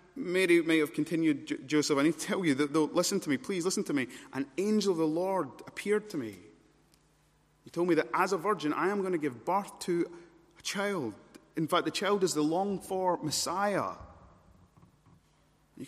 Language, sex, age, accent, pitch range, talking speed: English, male, 30-49, British, 125-180 Hz, 200 wpm